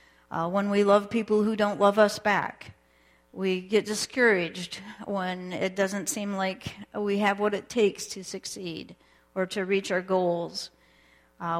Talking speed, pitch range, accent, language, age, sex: 160 wpm, 175-215 Hz, American, English, 50-69, female